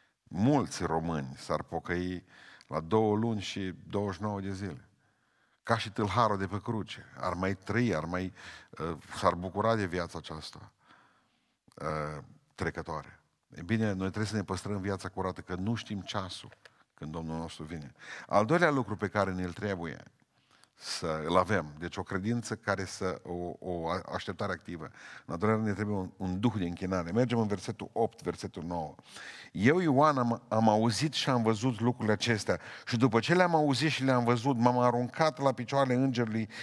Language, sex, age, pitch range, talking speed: Romanian, male, 50-69, 95-135 Hz, 160 wpm